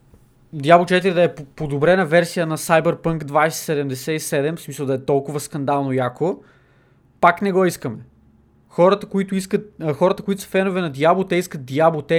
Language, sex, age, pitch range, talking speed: Bulgarian, male, 20-39, 140-180 Hz, 160 wpm